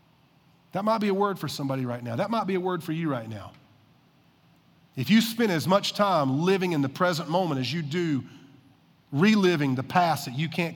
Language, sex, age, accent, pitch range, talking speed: English, male, 40-59, American, 140-195 Hz, 210 wpm